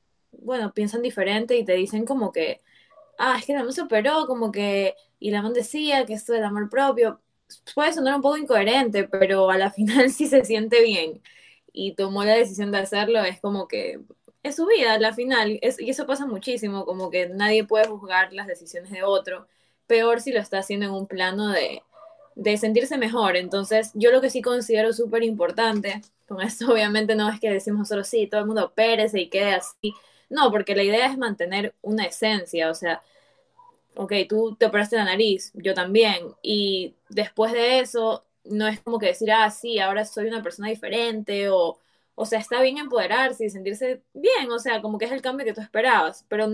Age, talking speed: 10-29, 205 wpm